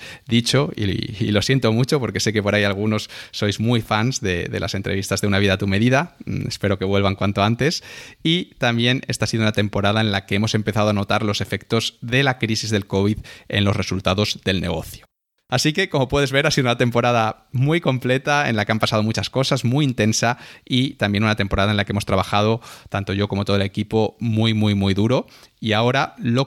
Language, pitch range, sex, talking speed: Spanish, 100-130 Hz, male, 220 wpm